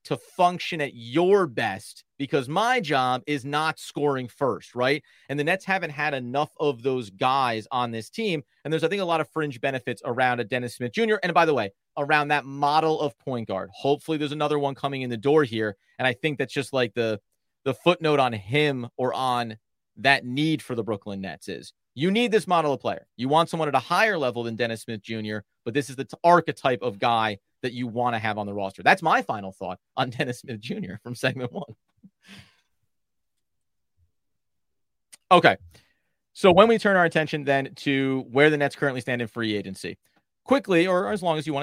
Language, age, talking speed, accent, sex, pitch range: English, 30-49, 210 wpm, American, male, 120-155 Hz